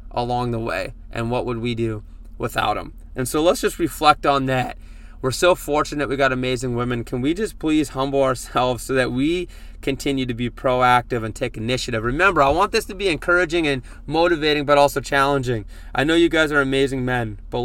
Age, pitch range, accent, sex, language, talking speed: 20-39, 110-140 Hz, American, male, English, 205 wpm